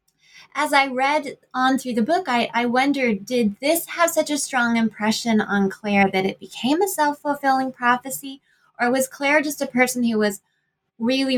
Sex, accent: female, American